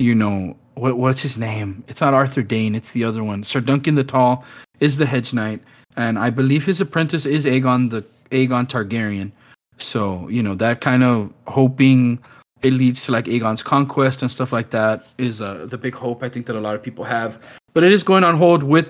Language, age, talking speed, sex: English, 20-39, 215 wpm, male